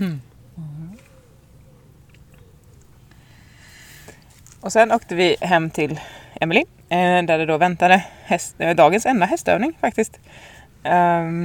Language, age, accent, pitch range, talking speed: Swedish, 20-39, native, 125-160 Hz, 90 wpm